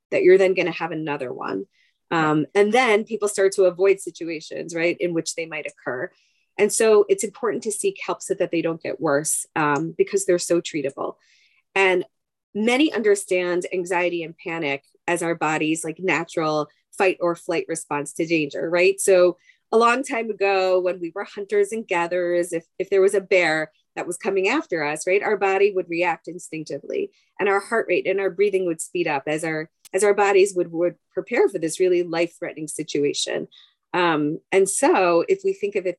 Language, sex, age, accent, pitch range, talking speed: English, female, 30-49, American, 170-205 Hz, 195 wpm